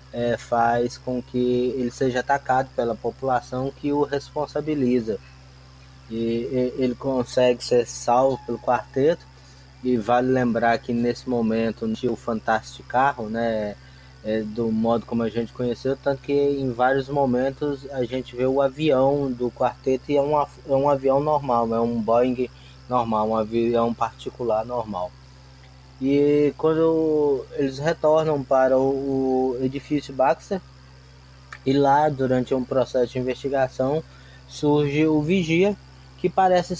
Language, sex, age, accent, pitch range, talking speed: Portuguese, male, 20-39, Brazilian, 115-145 Hz, 130 wpm